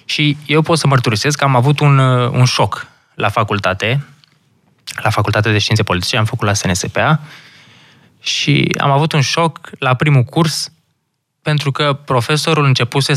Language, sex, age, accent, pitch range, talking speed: Romanian, male, 20-39, native, 115-150 Hz, 155 wpm